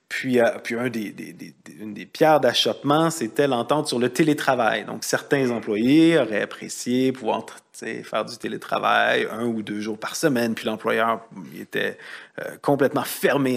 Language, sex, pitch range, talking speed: French, male, 120-150 Hz, 175 wpm